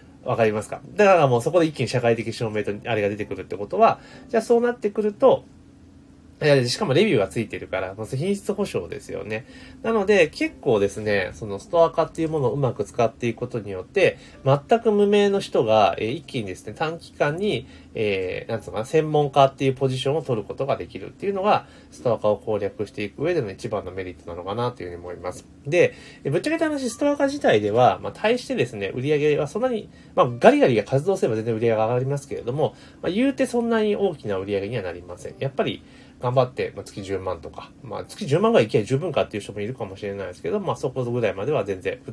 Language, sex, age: Japanese, male, 30-49